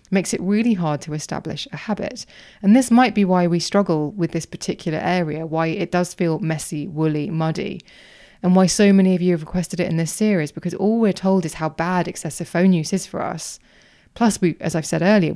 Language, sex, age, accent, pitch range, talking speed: English, female, 20-39, British, 160-195 Hz, 225 wpm